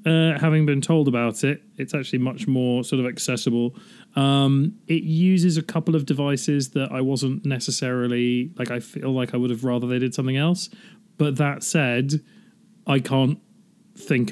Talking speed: 175 wpm